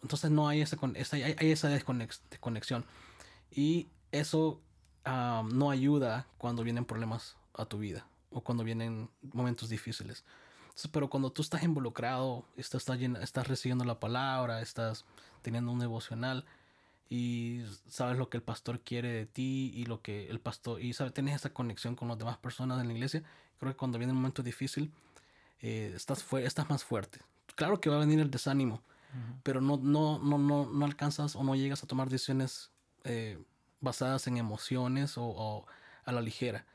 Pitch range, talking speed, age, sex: 115-140 Hz, 170 wpm, 20-39, male